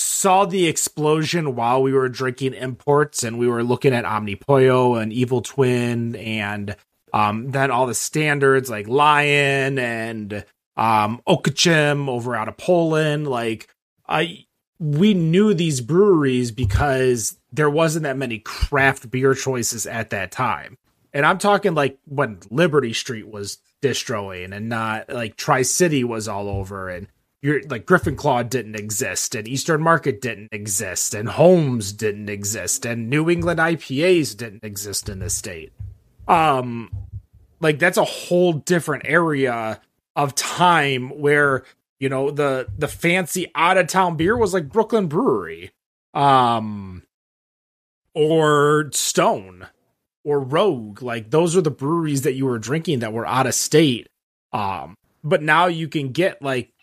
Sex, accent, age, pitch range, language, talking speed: male, American, 30-49, 110-155 Hz, English, 145 wpm